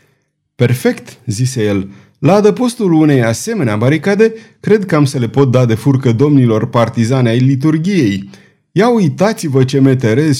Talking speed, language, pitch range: 145 wpm, Romanian, 115-165 Hz